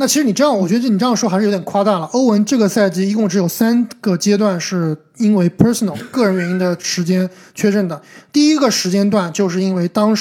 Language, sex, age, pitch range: Chinese, male, 20-39, 180-225 Hz